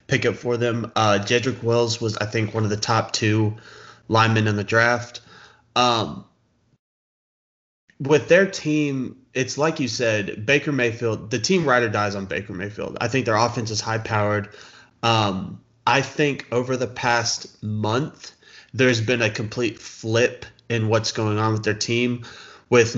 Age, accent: 20-39, American